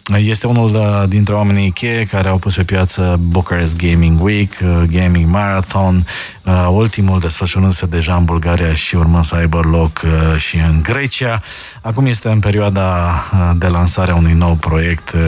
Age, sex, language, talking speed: 20-39, male, Romanian, 150 wpm